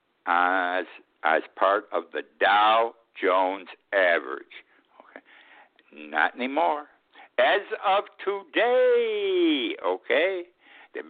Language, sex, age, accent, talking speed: English, male, 60-79, American, 85 wpm